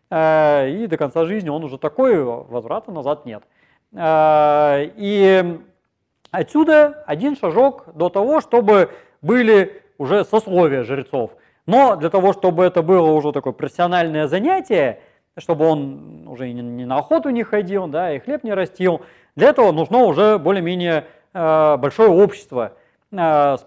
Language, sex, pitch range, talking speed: Russian, male, 150-225 Hz, 130 wpm